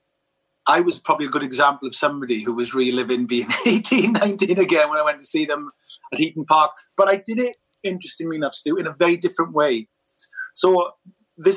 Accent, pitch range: British, 130-205 Hz